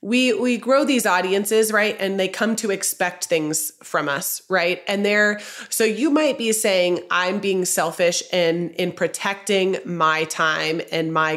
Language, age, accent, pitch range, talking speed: English, 20-39, American, 165-215 Hz, 170 wpm